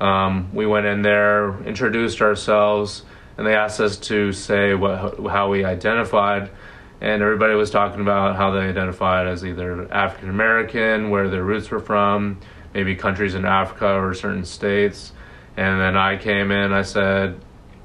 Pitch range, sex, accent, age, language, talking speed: 95-105 Hz, male, American, 20-39, English, 160 wpm